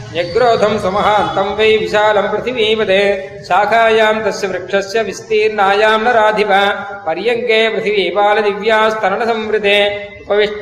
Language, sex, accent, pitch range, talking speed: Tamil, male, native, 200-220 Hz, 60 wpm